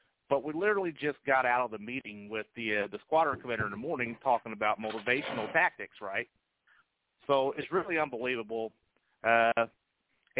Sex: male